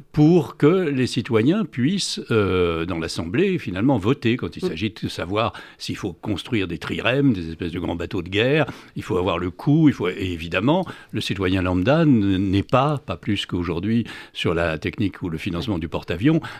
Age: 60-79